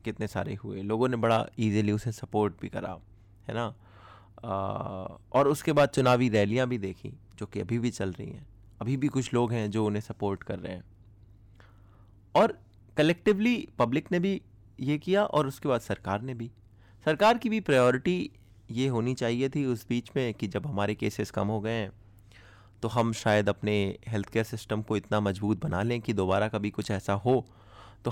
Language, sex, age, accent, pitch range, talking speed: Hindi, male, 20-39, native, 100-125 Hz, 190 wpm